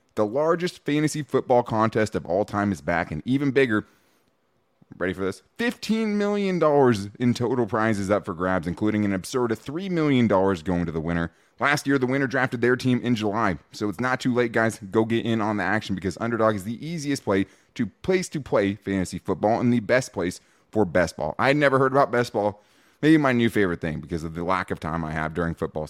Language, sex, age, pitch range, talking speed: English, male, 20-39, 95-135 Hz, 220 wpm